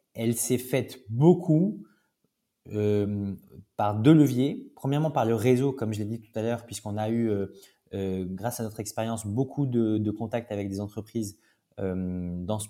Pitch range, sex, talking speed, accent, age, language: 105-125 Hz, male, 180 wpm, French, 20-39, French